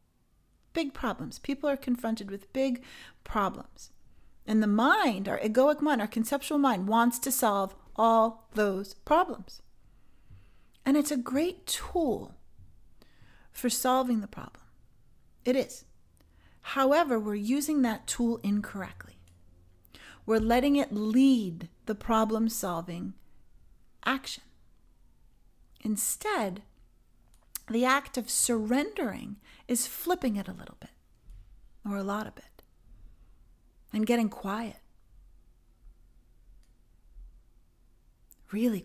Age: 40-59